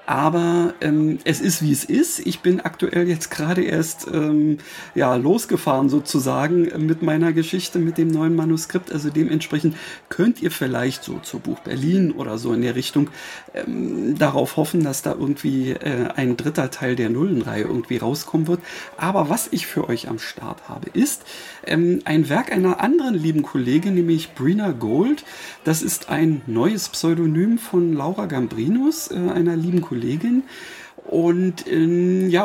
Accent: German